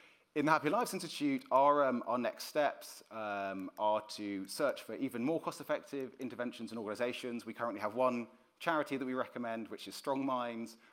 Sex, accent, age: male, British, 30-49